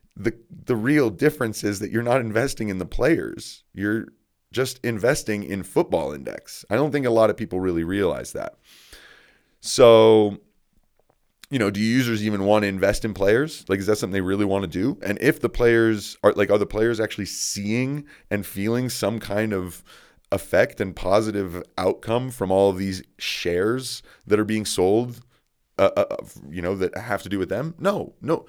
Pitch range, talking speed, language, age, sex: 95-120 Hz, 190 wpm, English, 30-49, male